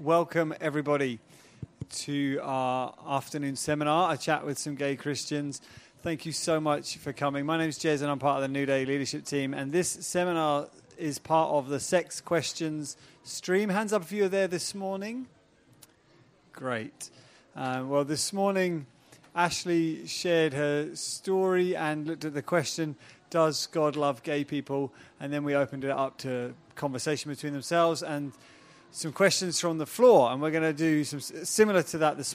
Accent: British